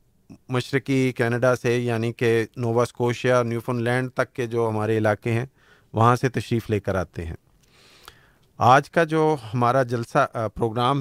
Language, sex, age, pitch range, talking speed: Urdu, male, 40-59, 115-125 Hz, 160 wpm